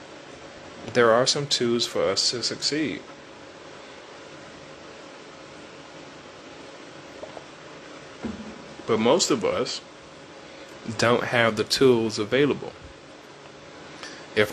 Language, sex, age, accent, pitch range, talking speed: English, male, 30-49, American, 100-115 Hz, 75 wpm